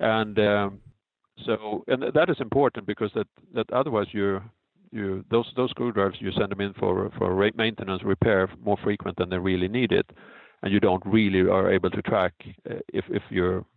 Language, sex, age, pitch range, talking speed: English, male, 50-69, 95-115 Hz, 185 wpm